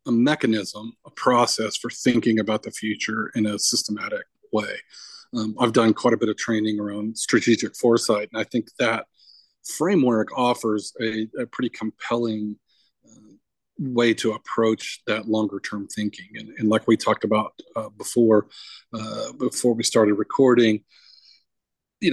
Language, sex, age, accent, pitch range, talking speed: English, male, 40-59, American, 110-120 Hz, 150 wpm